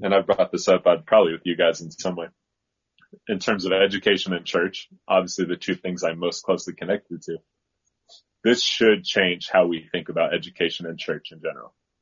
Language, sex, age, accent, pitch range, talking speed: English, male, 30-49, American, 90-115 Hz, 200 wpm